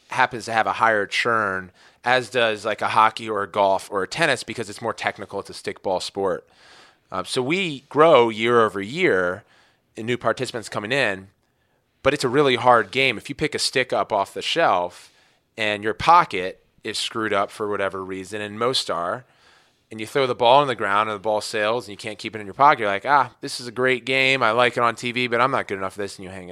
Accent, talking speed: American, 240 wpm